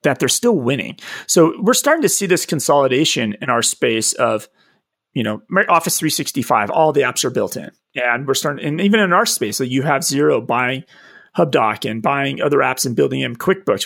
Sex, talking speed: male, 200 wpm